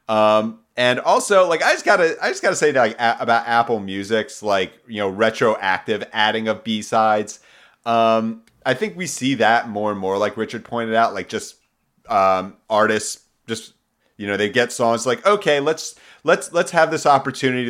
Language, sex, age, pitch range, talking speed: English, male, 30-49, 95-115 Hz, 180 wpm